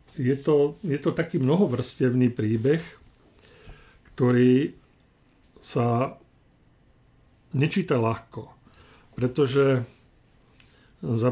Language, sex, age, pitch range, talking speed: Slovak, male, 50-69, 115-140 Hz, 70 wpm